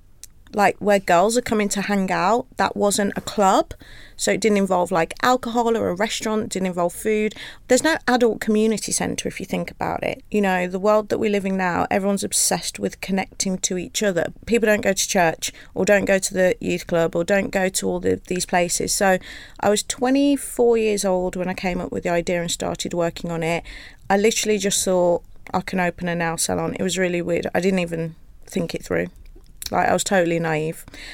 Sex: female